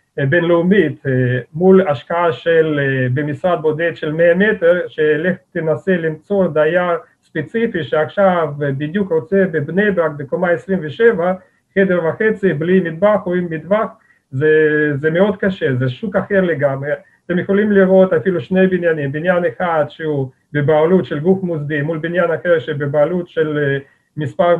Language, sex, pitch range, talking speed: Hebrew, male, 150-185 Hz, 130 wpm